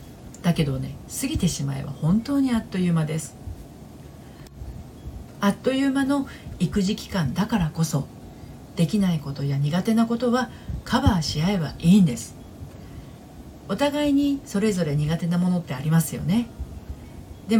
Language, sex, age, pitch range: Japanese, female, 40-59, 150-235 Hz